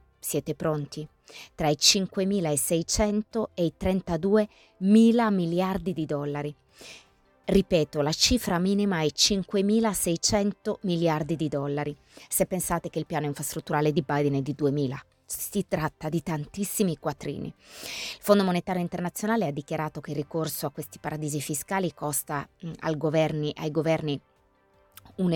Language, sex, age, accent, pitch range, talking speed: Italian, female, 20-39, native, 150-185 Hz, 125 wpm